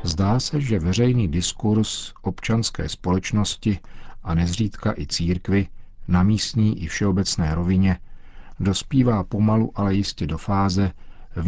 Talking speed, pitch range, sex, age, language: 120 wpm, 85-105 Hz, male, 50-69, Czech